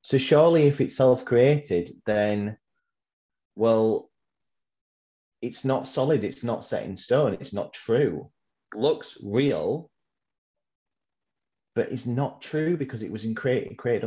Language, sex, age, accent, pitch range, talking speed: English, male, 30-49, British, 95-125 Hz, 130 wpm